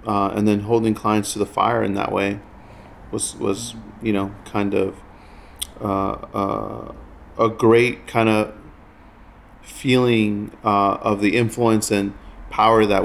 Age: 40-59